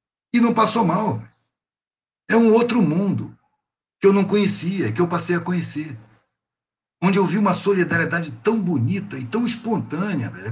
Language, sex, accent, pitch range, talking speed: Portuguese, male, Brazilian, 140-195 Hz, 155 wpm